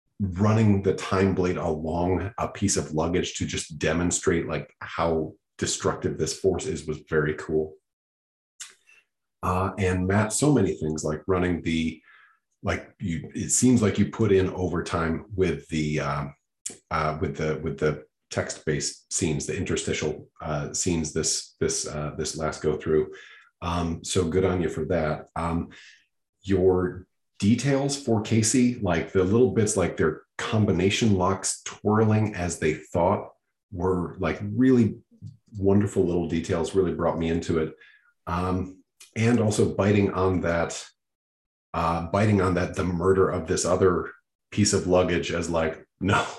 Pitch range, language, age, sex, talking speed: 80-100 Hz, English, 30-49, male, 150 wpm